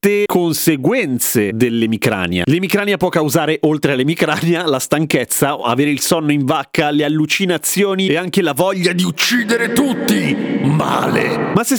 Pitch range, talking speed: 135-185 Hz, 130 wpm